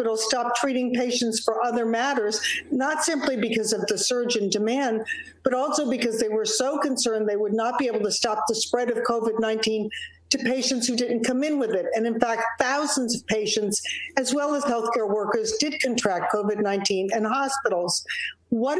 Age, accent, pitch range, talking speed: 50-69, American, 230-285 Hz, 180 wpm